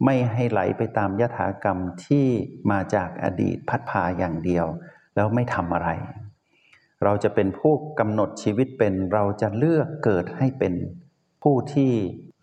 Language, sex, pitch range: Thai, male, 95-125 Hz